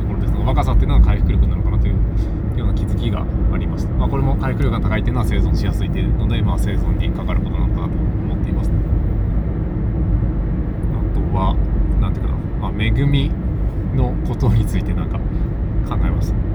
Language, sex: Japanese, male